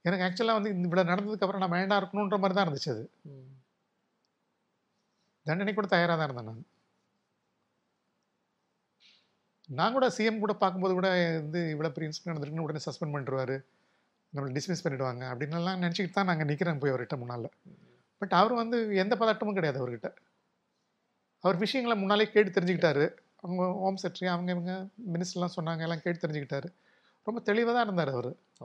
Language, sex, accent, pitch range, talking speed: Tamil, male, native, 145-195 Hz, 140 wpm